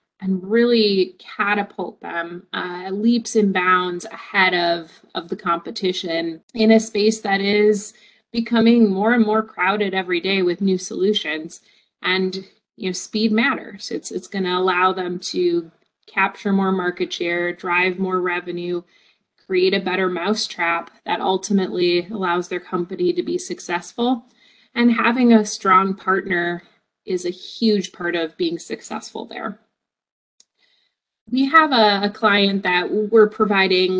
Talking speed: 140 wpm